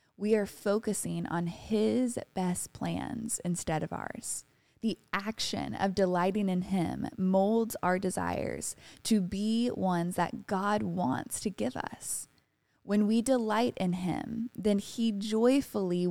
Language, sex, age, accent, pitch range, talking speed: English, female, 20-39, American, 180-230 Hz, 135 wpm